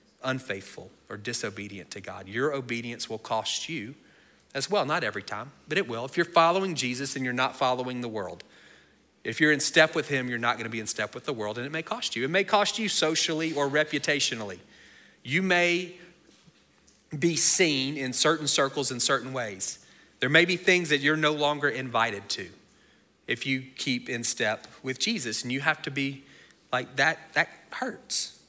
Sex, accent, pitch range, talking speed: male, American, 120-160 Hz, 190 wpm